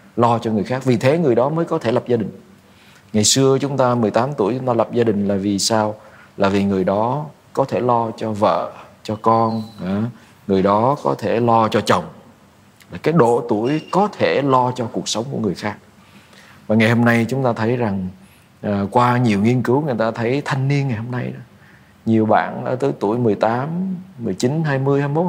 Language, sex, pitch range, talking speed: Vietnamese, male, 105-130 Hz, 205 wpm